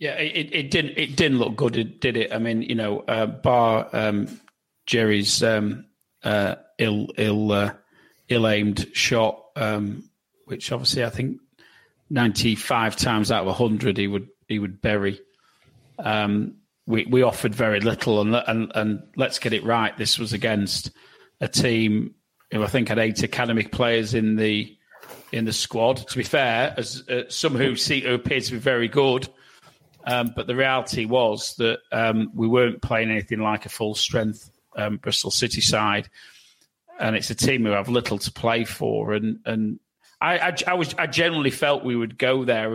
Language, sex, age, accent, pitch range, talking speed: English, male, 40-59, British, 110-125 Hz, 175 wpm